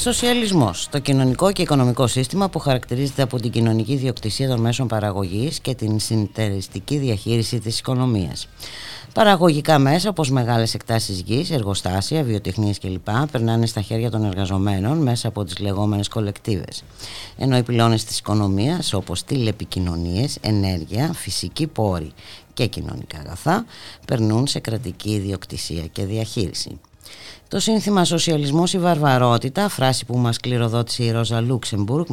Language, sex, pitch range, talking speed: Greek, female, 100-135 Hz, 135 wpm